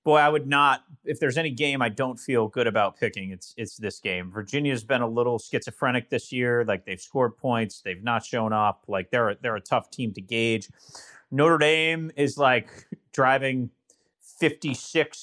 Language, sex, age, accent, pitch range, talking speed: English, male, 30-49, American, 115-150 Hz, 190 wpm